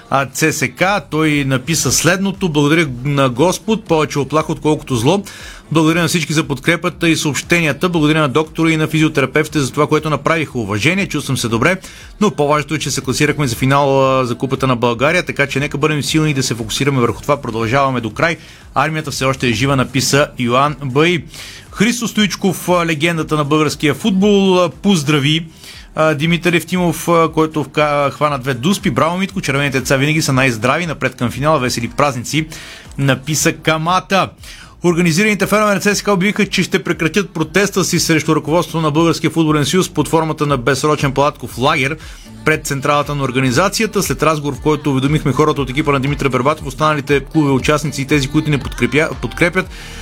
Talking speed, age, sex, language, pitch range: 170 wpm, 30-49, male, Bulgarian, 140-165 Hz